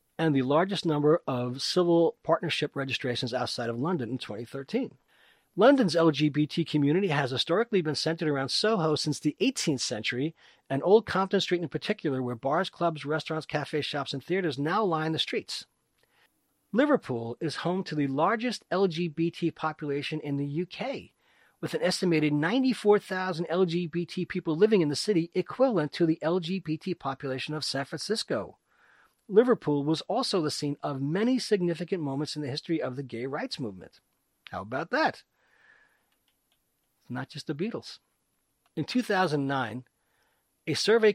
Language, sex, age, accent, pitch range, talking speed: English, male, 40-59, American, 140-180 Hz, 150 wpm